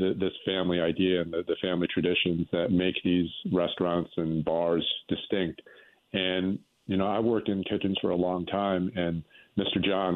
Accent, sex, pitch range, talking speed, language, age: American, male, 85-100 Hz, 165 wpm, English, 40-59